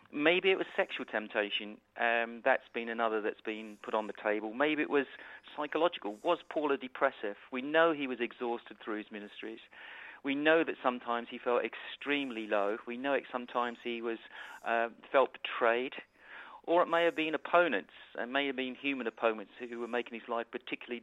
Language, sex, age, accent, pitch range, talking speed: English, male, 40-59, British, 115-140 Hz, 190 wpm